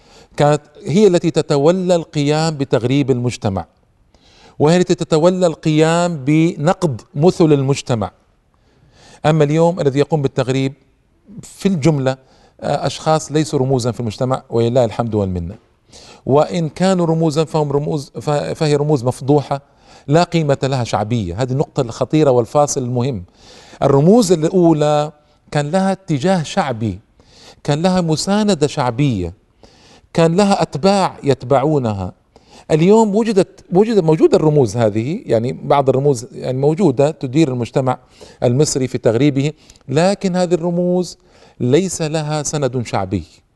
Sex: male